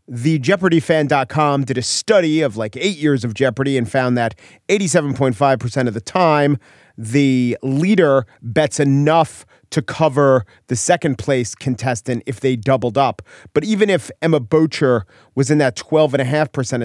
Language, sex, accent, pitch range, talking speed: English, male, American, 115-150 Hz, 145 wpm